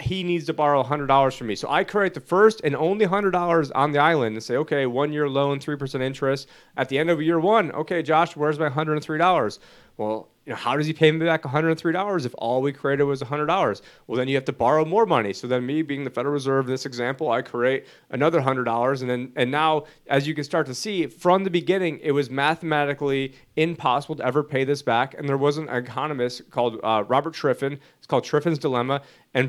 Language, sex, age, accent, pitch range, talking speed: English, male, 30-49, American, 130-155 Hz, 215 wpm